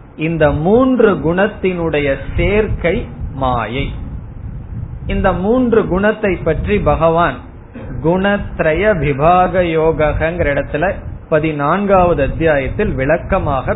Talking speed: 65 wpm